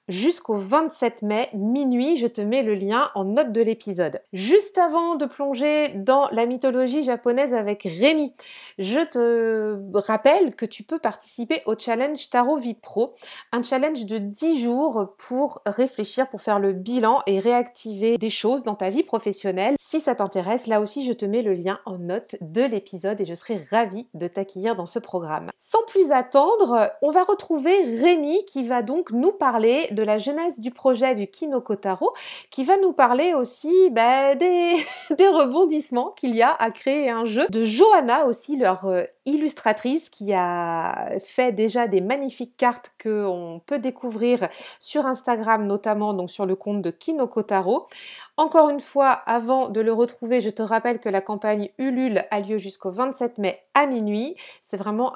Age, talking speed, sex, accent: 30-49, 175 wpm, female, French